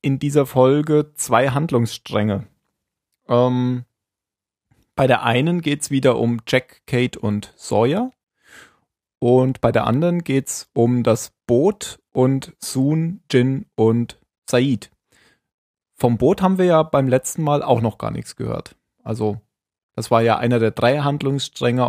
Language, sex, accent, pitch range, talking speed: German, male, German, 120-145 Hz, 145 wpm